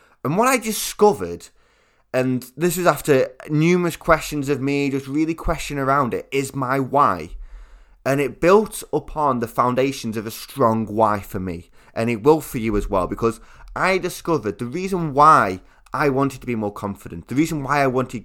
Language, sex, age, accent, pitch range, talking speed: English, male, 20-39, British, 115-150 Hz, 185 wpm